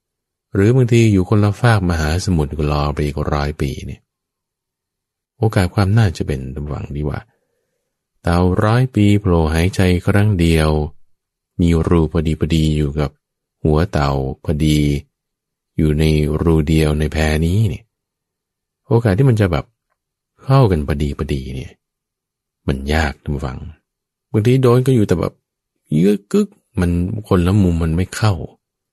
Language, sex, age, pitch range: English, male, 20-39, 75-105 Hz